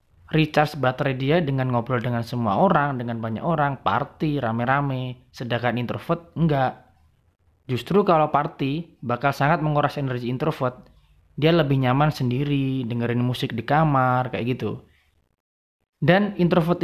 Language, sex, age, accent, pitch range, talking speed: Indonesian, male, 20-39, native, 115-145 Hz, 130 wpm